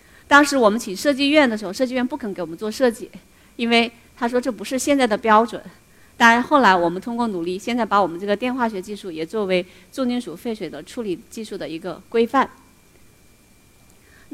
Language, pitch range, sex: Chinese, 190-250 Hz, female